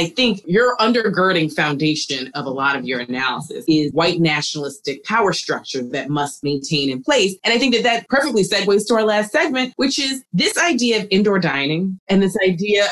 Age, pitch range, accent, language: 30-49, 165-240 Hz, American, English